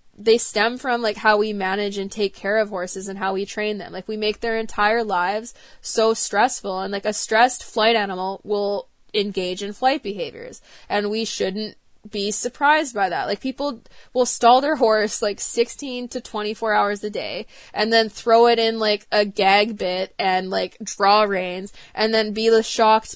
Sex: female